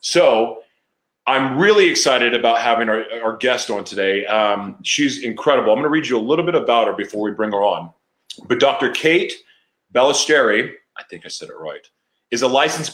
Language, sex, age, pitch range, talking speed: English, male, 30-49, 115-175 Hz, 190 wpm